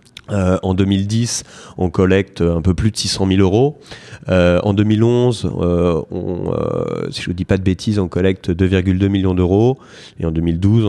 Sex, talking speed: male, 185 wpm